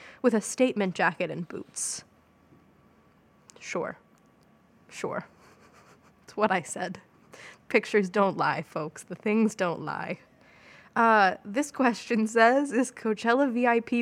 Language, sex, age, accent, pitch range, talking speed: English, female, 20-39, American, 195-230 Hz, 115 wpm